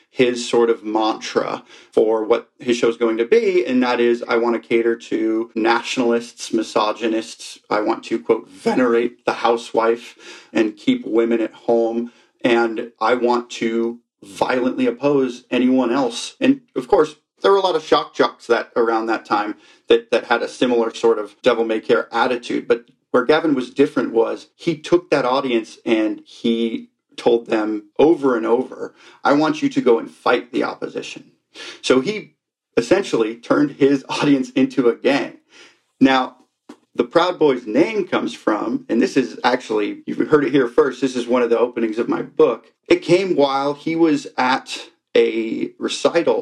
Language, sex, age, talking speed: English, male, 40-59, 170 wpm